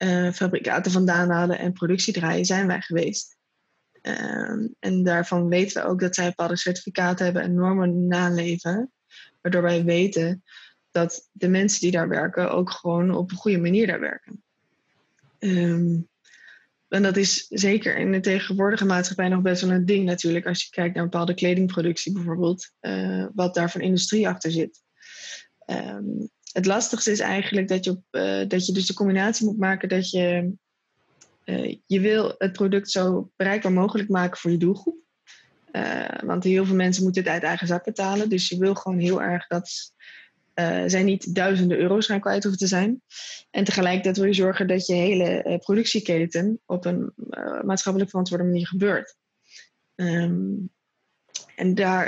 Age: 20-39